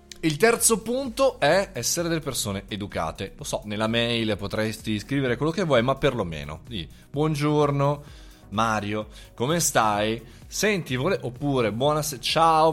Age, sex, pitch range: 20-39, male, 105-155 Hz